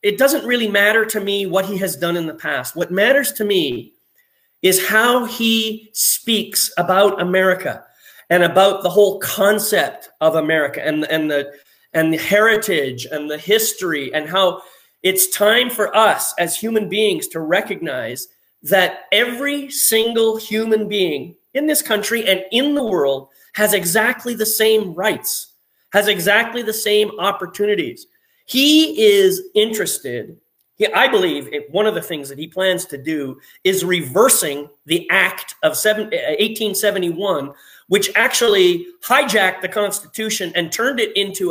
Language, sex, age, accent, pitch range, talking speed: English, male, 30-49, American, 180-235 Hz, 145 wpm